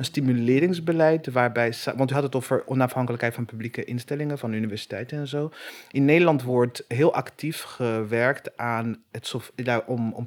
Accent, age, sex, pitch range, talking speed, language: Dutch, 30-49, male, 115-135 Hz, 150 wpm, Dutch